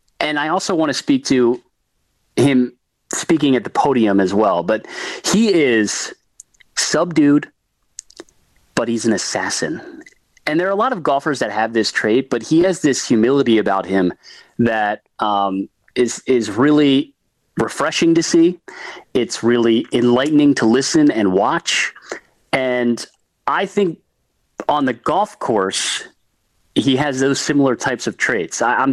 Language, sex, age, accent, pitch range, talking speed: English, male, 30-49, American, 115-165 Hz, 145 wpm